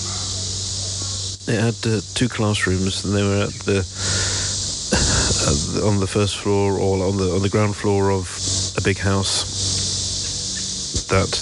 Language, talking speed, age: English, 145 wpm, 40-59